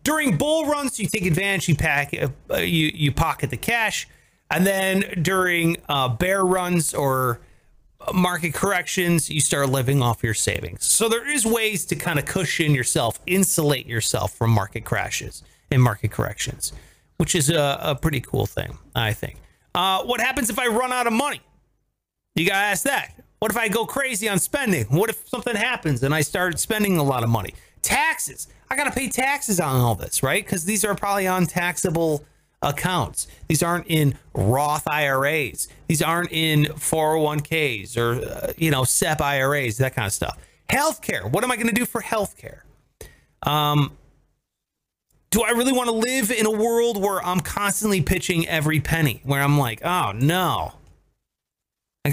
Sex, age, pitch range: male, 30-49, 135-205 Hz